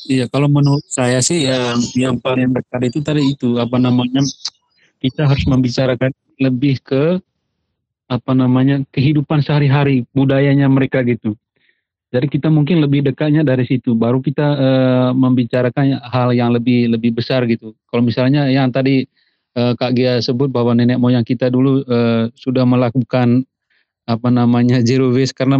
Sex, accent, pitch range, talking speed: male, native, 120-140 Hz, 150 wpm